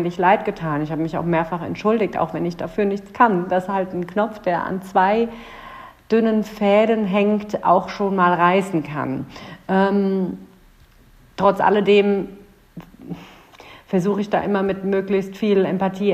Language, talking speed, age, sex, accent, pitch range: German, 150 wpm, 50-69, female, German, 175-200 Hz